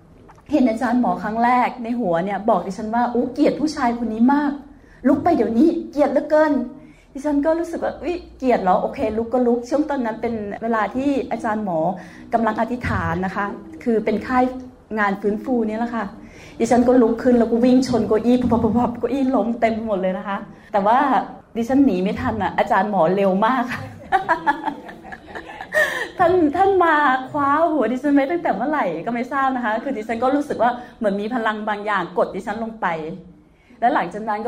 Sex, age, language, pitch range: female, 30-49, Thai, 210-260 Hz